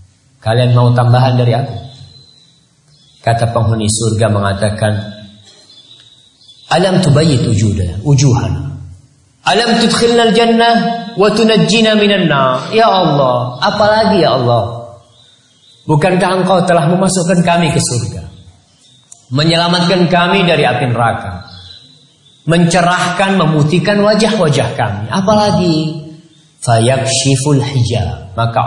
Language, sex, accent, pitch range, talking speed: English, male, Indonesian, 100-145 Hz, 90 wpm